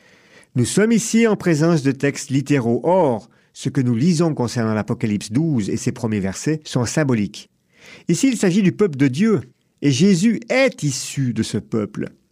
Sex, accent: male, French